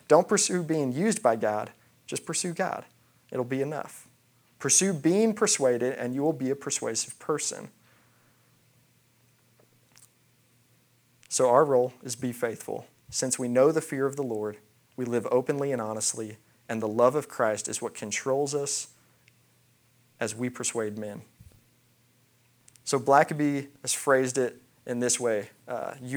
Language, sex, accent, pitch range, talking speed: English, male, American, 115-135 Hz, 145 wpm